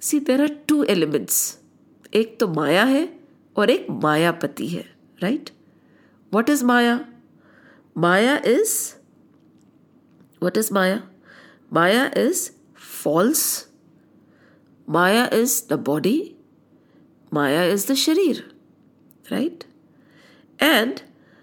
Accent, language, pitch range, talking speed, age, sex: Indian, English, 185-275 Hz, 100 wpm, 50-69, female